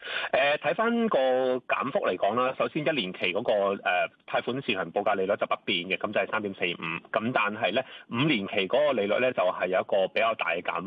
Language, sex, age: Chinese, male, 30-49